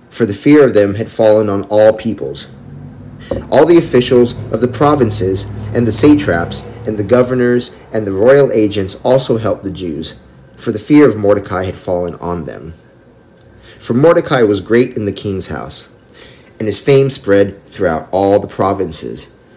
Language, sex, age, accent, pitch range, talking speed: English, male, 40-59, American, 95-125 Hz, 170 wpm